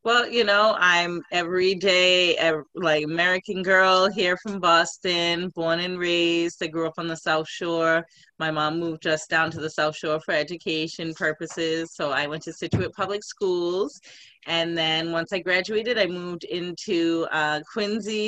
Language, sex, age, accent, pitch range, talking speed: English, female, 30-49, American, 155-185 Hz, 165 wpm